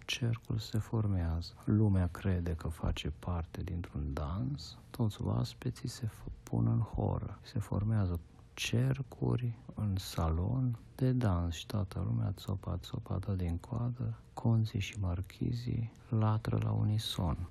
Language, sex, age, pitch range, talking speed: Romanian, male, 50-69, 90-115 Hz, 125 wpm